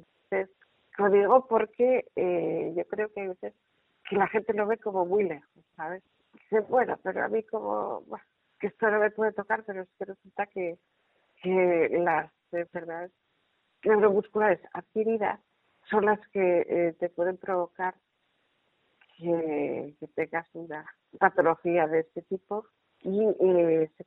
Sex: female